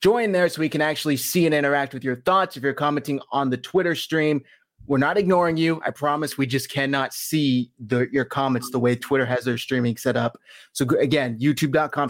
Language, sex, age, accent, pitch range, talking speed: English, male, 20-39, American, 130-165 Hz, 210 wpm